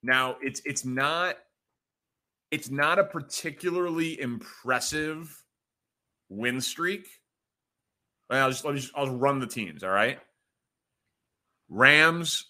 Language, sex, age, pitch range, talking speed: English, male, 30-49, 120-145 Hz, 110 wpm